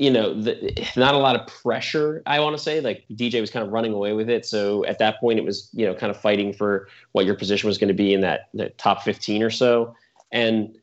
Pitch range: 100-115 Hz